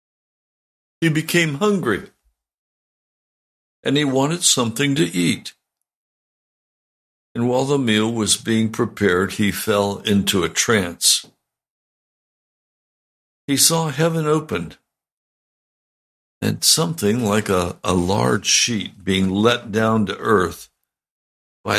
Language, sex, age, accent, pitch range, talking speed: English, male, 60-79, American, 105-155 Hz, 105 wpm